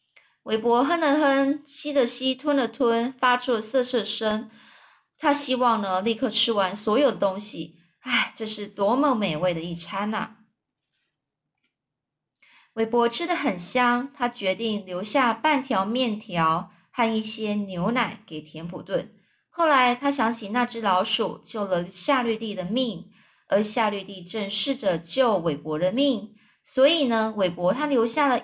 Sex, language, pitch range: female, Chinese, 185-255 Hz